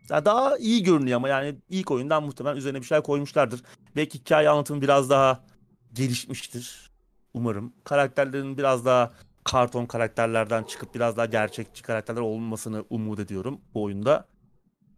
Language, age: Turkish, 30-49